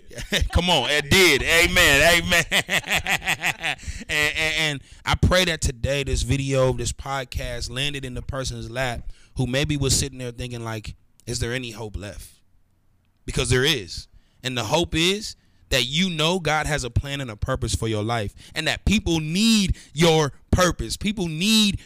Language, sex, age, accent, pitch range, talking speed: English, male, 30-49, American, 115-165 Hz, 170 wpm